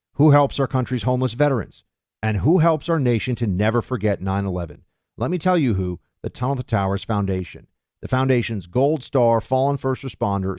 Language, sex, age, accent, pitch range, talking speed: English, male, 50-69, American, 105-140 Hz, 175 wpm